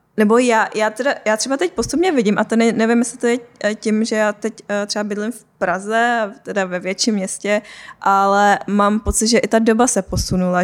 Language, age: Czech, 20-39